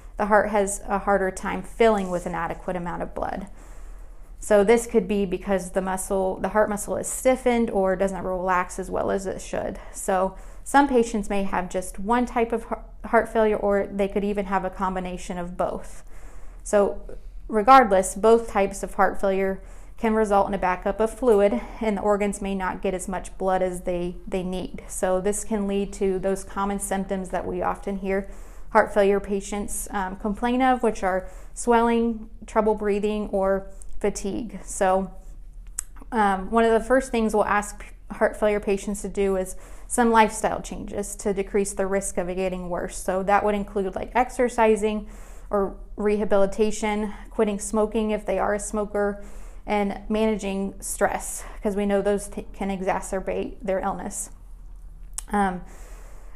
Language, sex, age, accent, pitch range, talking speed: English, female, 30-49, American, 190-215 Hz, 170 wpm